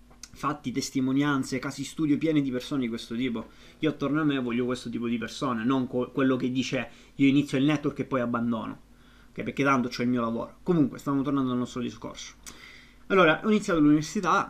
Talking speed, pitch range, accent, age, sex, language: 200 wpm, 125-150 Hz, native, 20-39, male, Italian